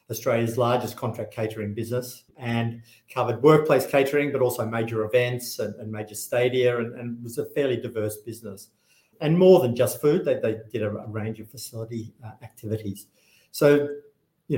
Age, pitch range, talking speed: 50-69, 110-130 Hz, 165 wpm